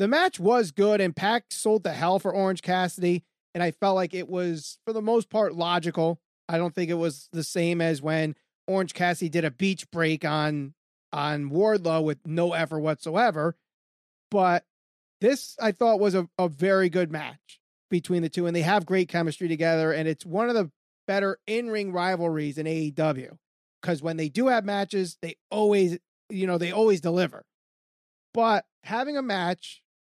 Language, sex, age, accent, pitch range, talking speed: English, male, 30-49, American, 165-210 Hz, 185 wpm